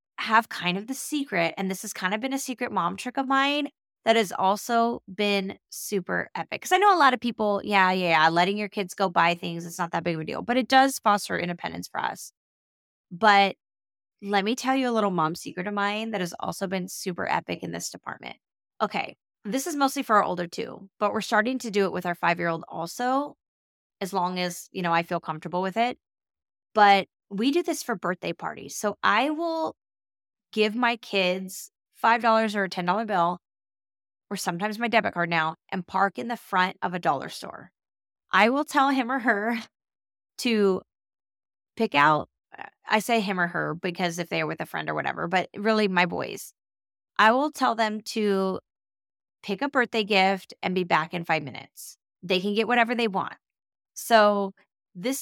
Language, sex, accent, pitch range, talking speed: English, female, American, 180-235 Hz, 200 wpm